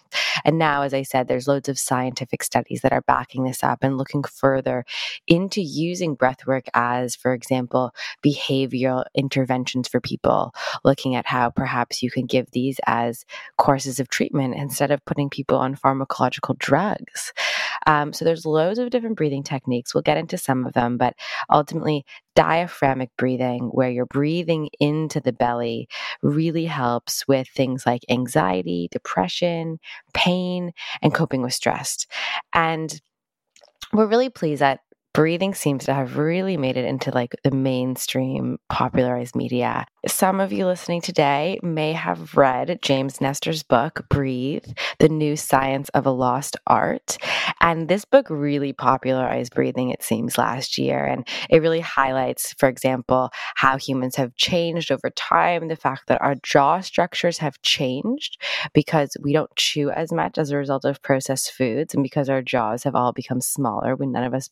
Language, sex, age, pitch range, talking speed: English, female, 20-39, 130-155 Hz, 160 wpm